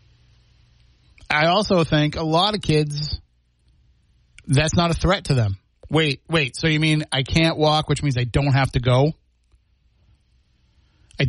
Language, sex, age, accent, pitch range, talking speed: English, male, 30-49, American, 110-145 Hz, 155 wpm